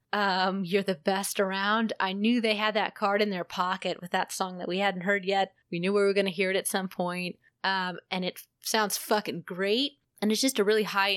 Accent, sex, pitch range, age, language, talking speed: American, female, 185-215 Hz, 20-39, English, 240 wpm